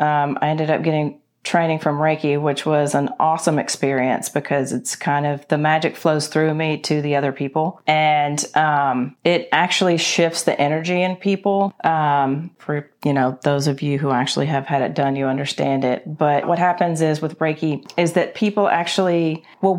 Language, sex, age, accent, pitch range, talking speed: English, female, 30-49, American, 145-170 Hz, 190 wpm